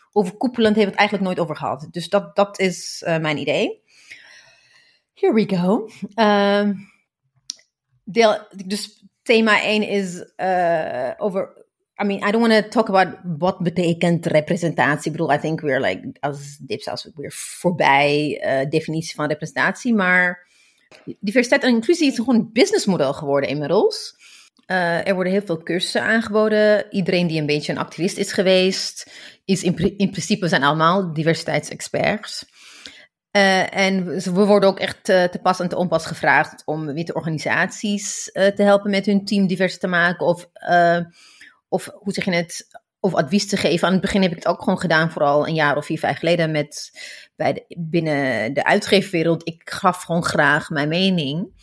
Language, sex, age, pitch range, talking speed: Dutch, female, 30-49, 165-205 Hz, 180 wpm